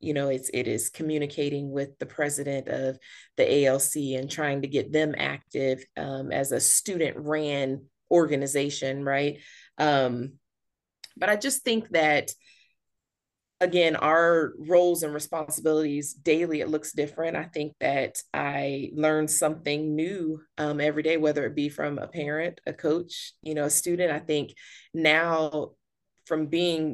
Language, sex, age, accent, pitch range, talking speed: English, female, 20-39, American, 140-160 Hz, 150 wpm